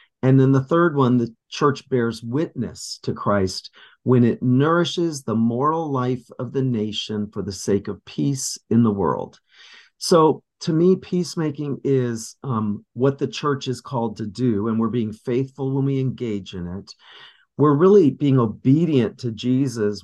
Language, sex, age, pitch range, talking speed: English, male, 40-59, 115-140 Hz, 170 wpm